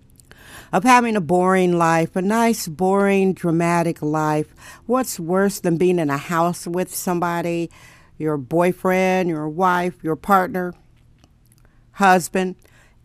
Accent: American